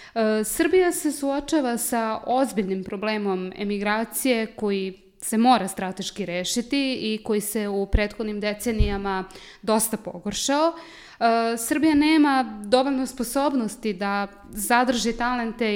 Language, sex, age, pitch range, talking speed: English, female, 20-39, 205-245 Hz, 105 wpm